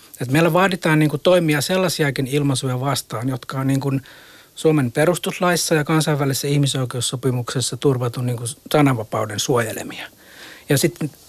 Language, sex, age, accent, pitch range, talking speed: Finnish, male, 60-79, native, 130-165 Hz, 135 wpm